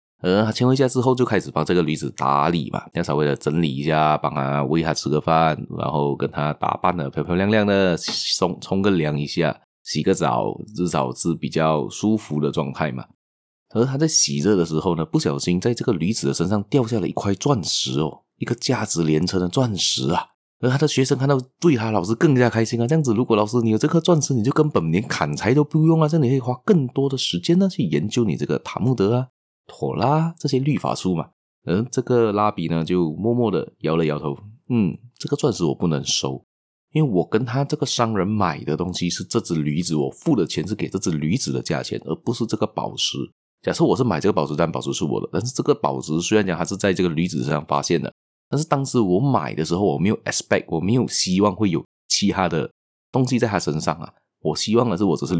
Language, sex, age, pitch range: Chinese, male, 20-39, 80-125 Hz